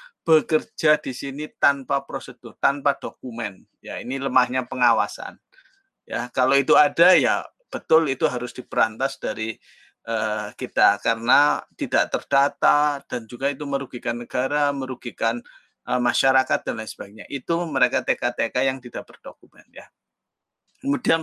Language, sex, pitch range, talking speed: Indonesian, male, 130-165 Hz, 125 wpm